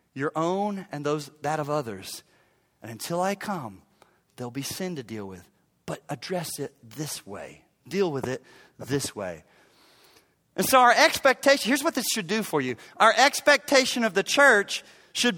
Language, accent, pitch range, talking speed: English, American, 155-230 Hz, 170 wpm